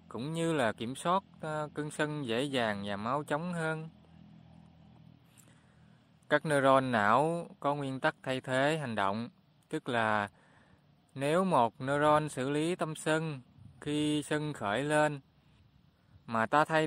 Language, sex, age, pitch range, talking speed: Vietnamese, male, 20-39, 120-155 Hz, 140 wpm